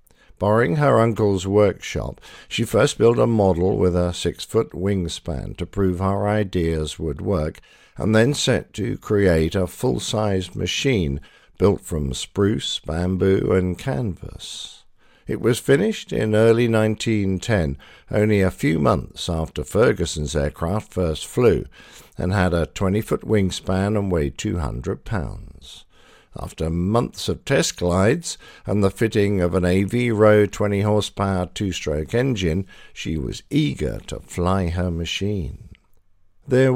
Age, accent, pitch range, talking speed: 50-69, British, 90-110 Hz, 130 wpm